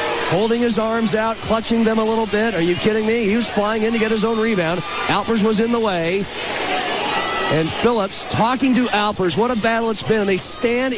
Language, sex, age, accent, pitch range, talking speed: English, male, 40-59, American, 195-240 Hz, 220 wpm